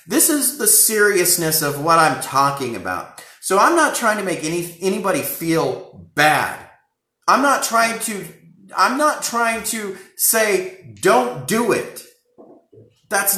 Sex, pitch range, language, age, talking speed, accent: male, 195-285 Hz, English, 30-49, 145 wpm, American